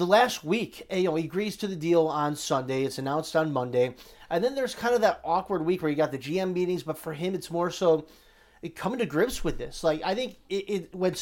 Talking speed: 250 wpm